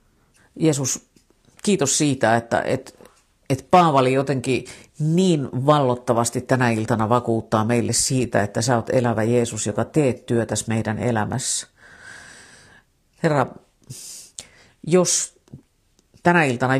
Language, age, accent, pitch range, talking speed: Finnish, 50-69, native, 115-135 Hz, 105 wpm